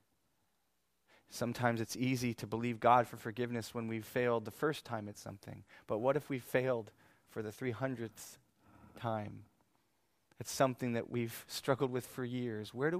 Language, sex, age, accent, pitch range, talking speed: English, male, 30-49, American, 115-145 Hz, 160 wpm